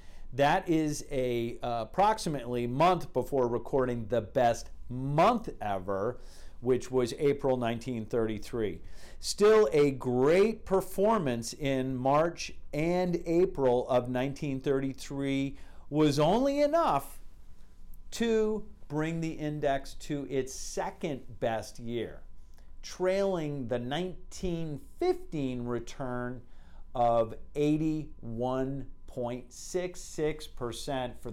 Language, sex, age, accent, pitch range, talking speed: English, male, 50-69, American, 115-150 Hz, 85 wpm